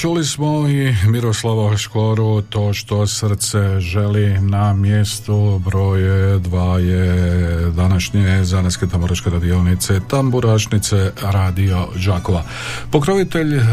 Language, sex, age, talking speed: Croatian, male, 50-69, 95 wpm